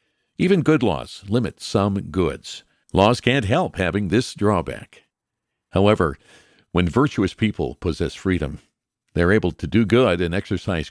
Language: English